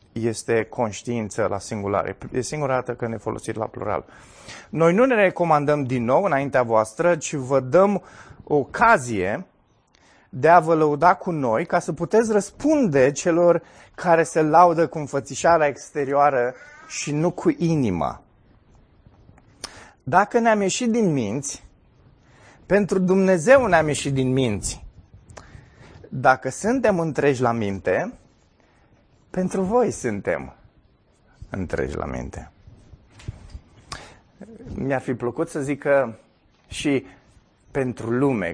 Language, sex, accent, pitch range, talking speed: Romanian, male, native, 115-180 Hz, 120 wpm